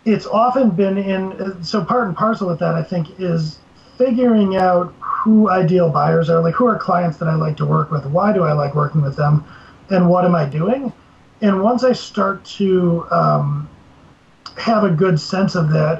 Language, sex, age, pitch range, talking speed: English, male, 30-49, 155-185 Hz, 200 wpm